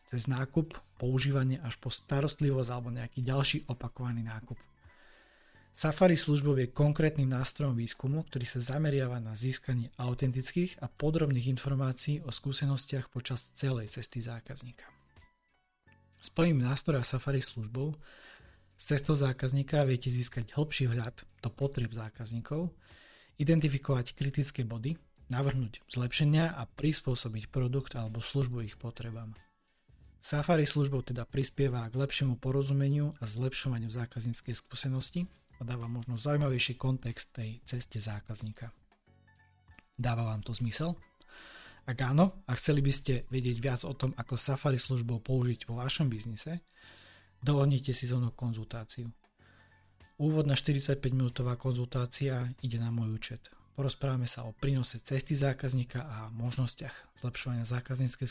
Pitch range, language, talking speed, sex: 115-140 Hz, Slovak, 120 wpm, male